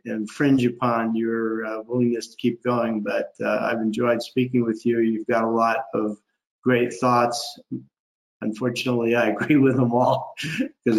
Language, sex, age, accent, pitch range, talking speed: English, male, 50-69, American, 110-125 Hz, 160 wpm